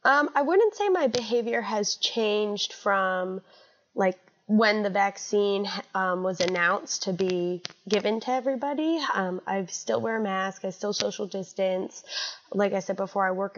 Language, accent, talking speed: English, American, 165 wpm